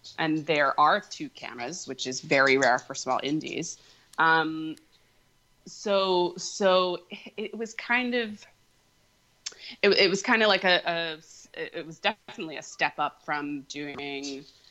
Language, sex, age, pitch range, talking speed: English, female, 20-39, 135-175 Hz, 145 wpm